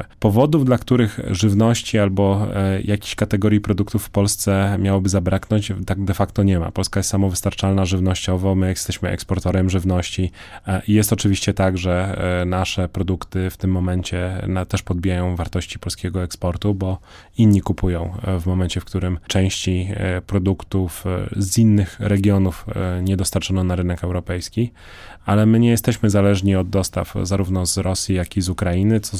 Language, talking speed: Polish, 150 wpm